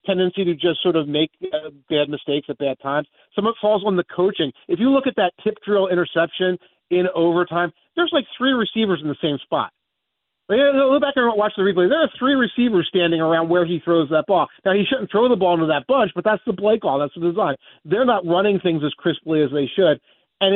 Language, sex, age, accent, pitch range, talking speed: English, male, 40-59, American, 155-205 Hz, 235 wpm